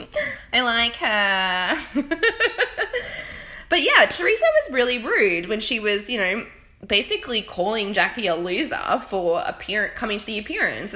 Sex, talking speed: female, 135 wpm